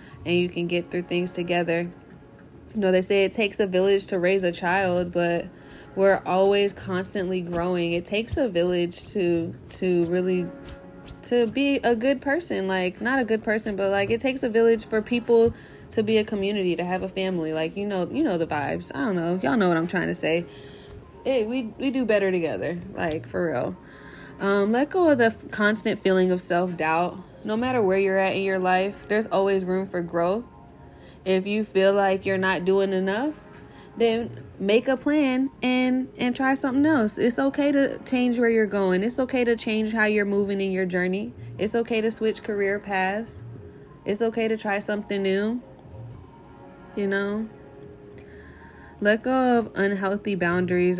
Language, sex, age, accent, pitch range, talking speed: English, female, 20-39, American, 180-220 Hz, 185 wpm